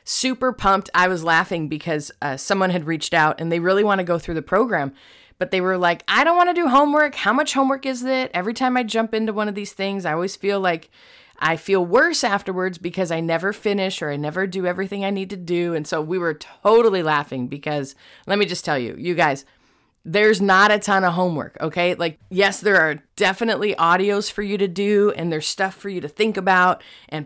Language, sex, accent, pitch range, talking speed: English, female, American, 165-205 Hz, 230 wpm